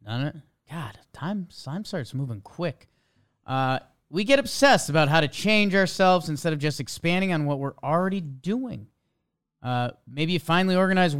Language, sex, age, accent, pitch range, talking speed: English, male, 30-49, American, 130-170 Hz, 155 wpm